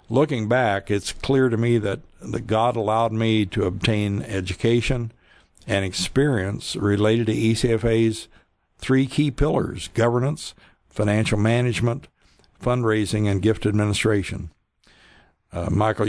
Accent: American